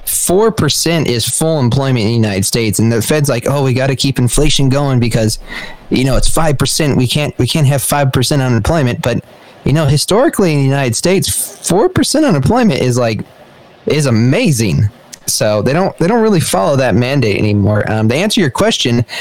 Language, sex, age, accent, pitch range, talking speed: English, male, 30-49, American, 120-145 Hz, 195 wpm